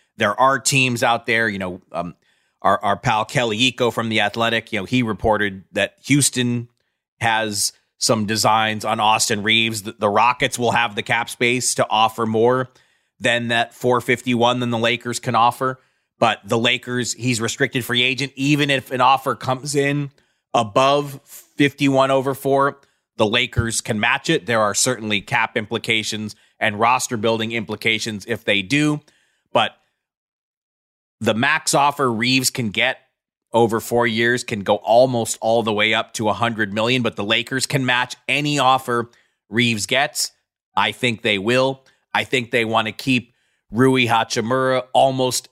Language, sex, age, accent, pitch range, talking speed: English, male, 30-49, American, 115-130 Hz, 165 wpm